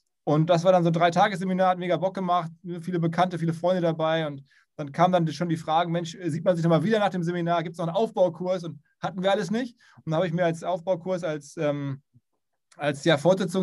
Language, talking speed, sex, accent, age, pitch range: German, 225 wpm, male, German, 20-39, 165-185 Hz